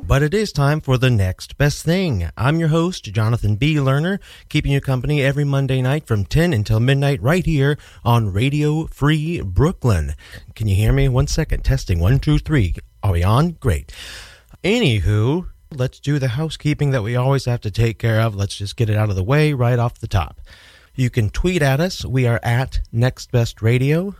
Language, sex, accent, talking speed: English, male, American, 195 wpm